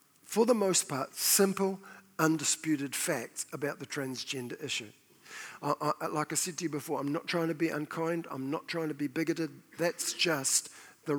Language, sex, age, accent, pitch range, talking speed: English, male, 50-69, Australian, 145-175 Hz, 170 wpm